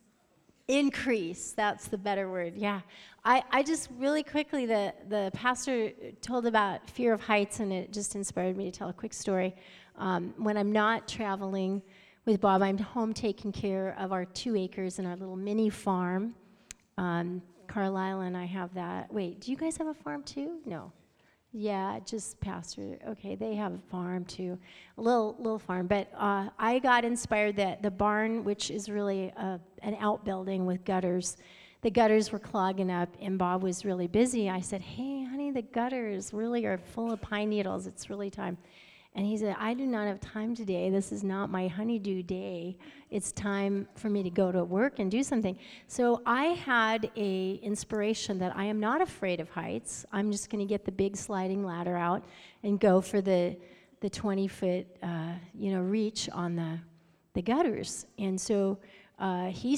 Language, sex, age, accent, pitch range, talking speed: English, female, 30-49, American, 190-225 Hz, 185 wpm